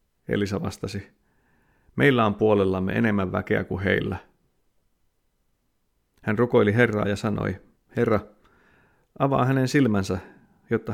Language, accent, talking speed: Finnish, native, 105 wpm